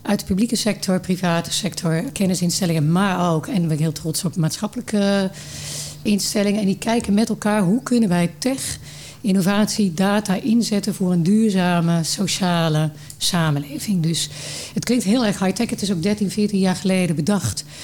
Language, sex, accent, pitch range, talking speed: Dutch, female, Dutch, 170-210 Hz, 160 wpm